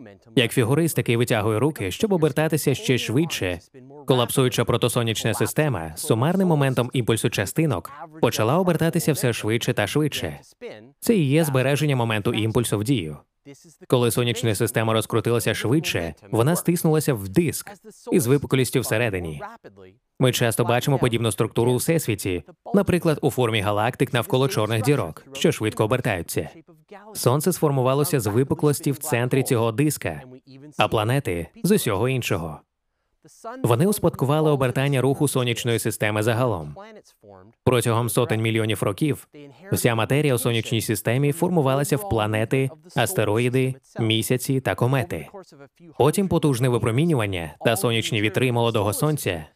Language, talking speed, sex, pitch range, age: Ukrainian, 125 wpm, male, 115-150 Hz, 20-39